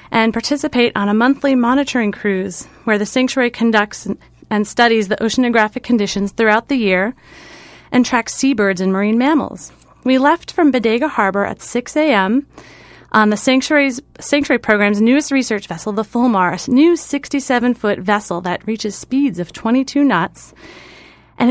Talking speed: 150 wpm